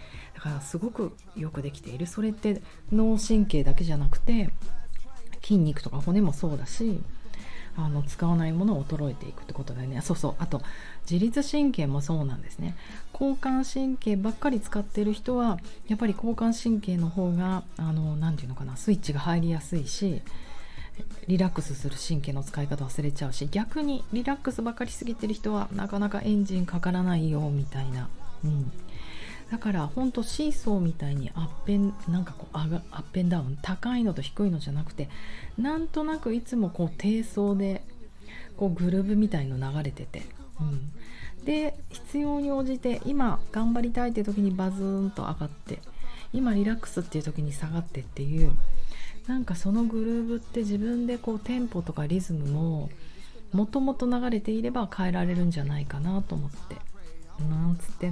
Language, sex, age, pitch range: Japanese, female, 40-59, 150-225 Hz